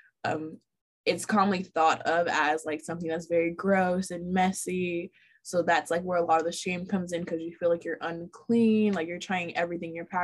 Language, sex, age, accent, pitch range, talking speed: English, female, 20-39, American, 165-185 Hz, 205 wpm